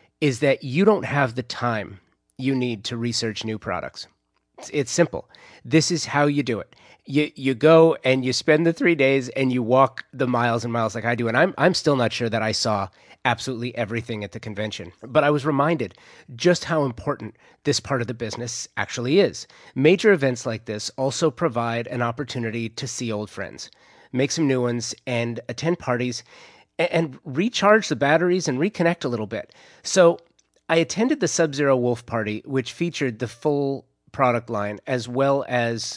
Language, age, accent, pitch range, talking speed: English, 30-49, American, 115-145 Hz, 190 wpm